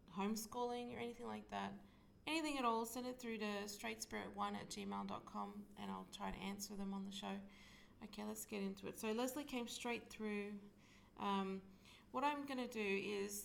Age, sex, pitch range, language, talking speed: 30-49, female, 190-225 Hz, English, 180 wpm